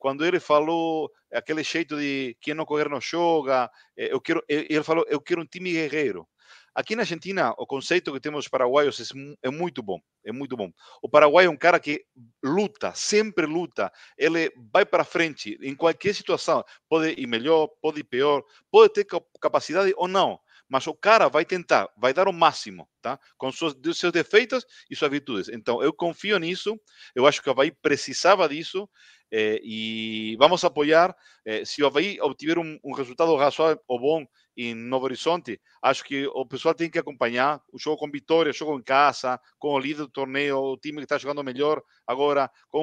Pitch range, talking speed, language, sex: 135-175 Hz, 190 wpm, Portuguese, male